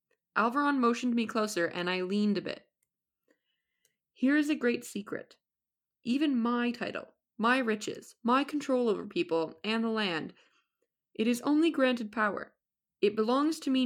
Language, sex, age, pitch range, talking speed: English, female, 20-39, 185-270 Hz, 150 wpm